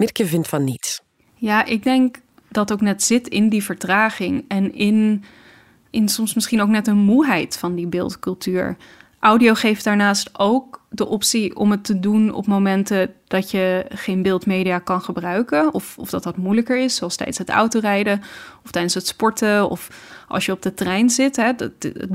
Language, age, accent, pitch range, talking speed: Dutch, 10-29, Dutch, 190-215 Hz, 180 wpm